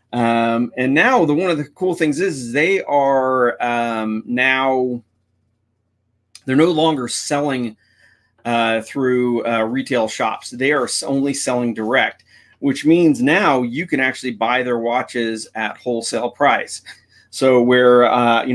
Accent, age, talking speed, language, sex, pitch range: American, 30-49, 145 wpm, English, male, 115-135 Hz